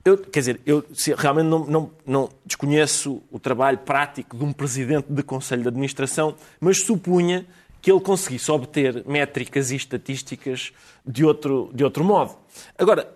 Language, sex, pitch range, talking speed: Portuguese, male, 135-190 Hz, 155 wpm